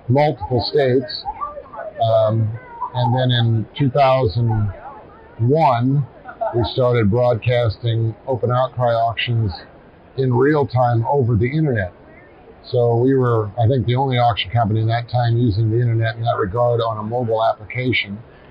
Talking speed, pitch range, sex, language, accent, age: 135 wpm, 115-130 Hz, male, English, American, 50-69